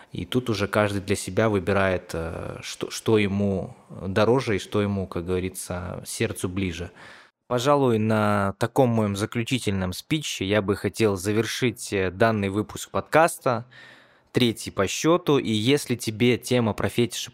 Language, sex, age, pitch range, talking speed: Russian, male, 20-39, 100-120 Hz, 135 wpm